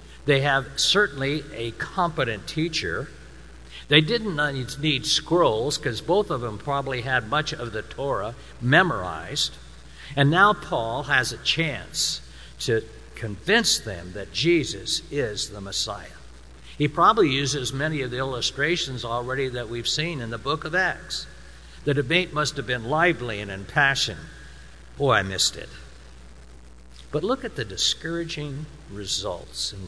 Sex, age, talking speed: male, 60-79, 140 wpm